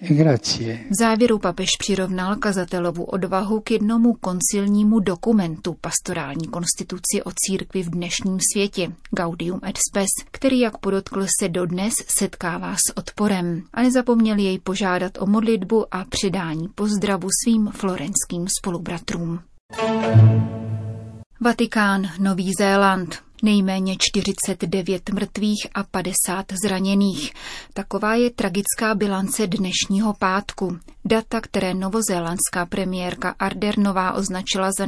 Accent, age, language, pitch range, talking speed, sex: native, 30-49, Czech, 185-210 Hz, 105 wpm, female